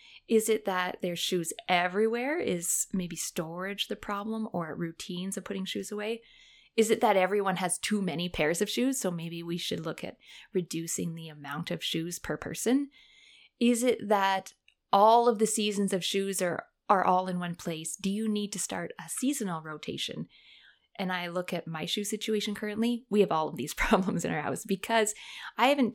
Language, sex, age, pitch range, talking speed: English, female, 20-39, 175-220 Hz, 190 wpm